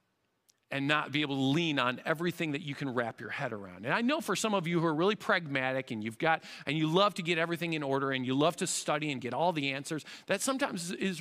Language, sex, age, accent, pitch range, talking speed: English, male, 40-59, American, 160-210 Hz, 270 wpm